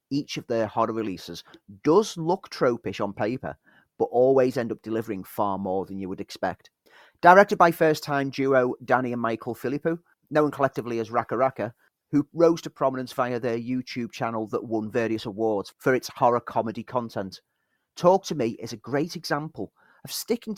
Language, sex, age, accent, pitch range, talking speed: English, male, 30-49, British, 115-150 Hz, 175 wpm